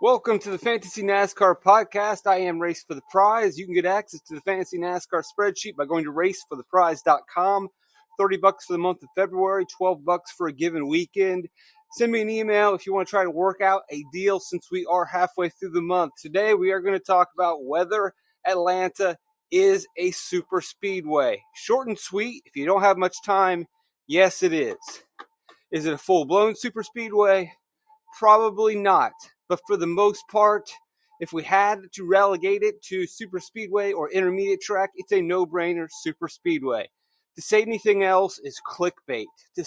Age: 30-49